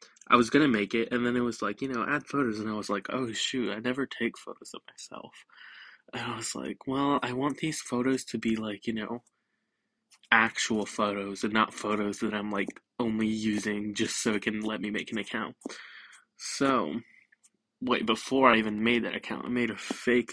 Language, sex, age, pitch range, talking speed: English, male, 20-39, 105-120 Hz, 210 wpm